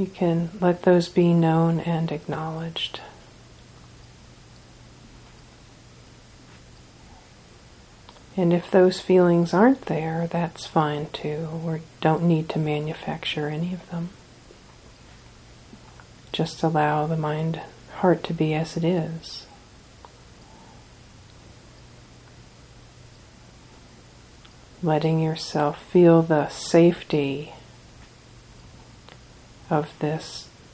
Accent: American